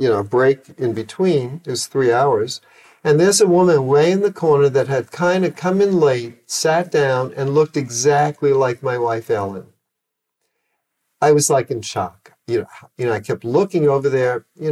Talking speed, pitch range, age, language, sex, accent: 190 wpm, 135-185 Hz, 50-69, English, male, American